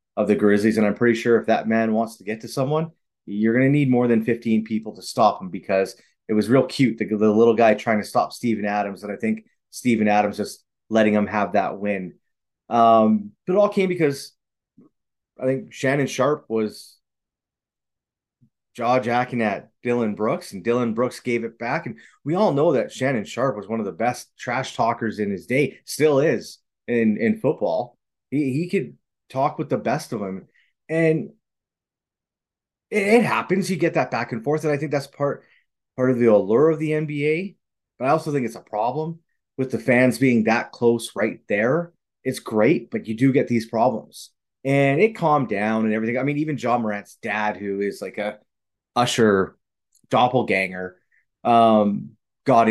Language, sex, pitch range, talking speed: English, male, 105-135 Hz, 190 wpm